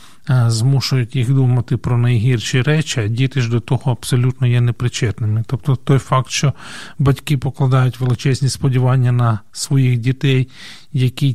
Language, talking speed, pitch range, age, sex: Ukrainian, 135 wpm, 125-145 Hz, 40-59, male